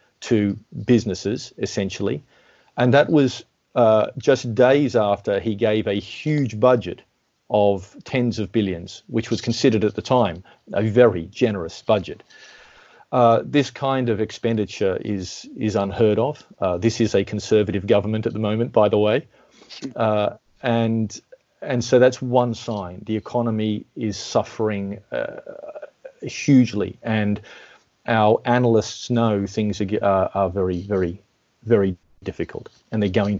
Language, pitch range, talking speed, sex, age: English, 100-120 Hz, 140 wpm, male, 40-59